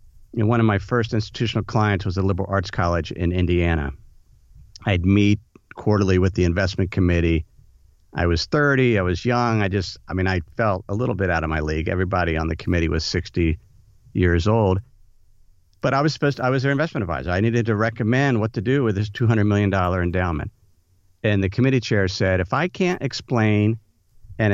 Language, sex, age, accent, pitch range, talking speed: English, male, 50-69, American, 95-120 Hz, 200 wpm